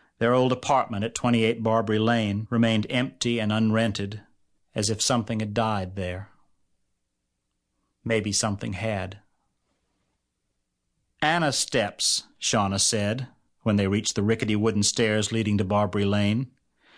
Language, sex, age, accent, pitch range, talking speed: English, male, 50-69, American, 105-130 Hz, 125 wpm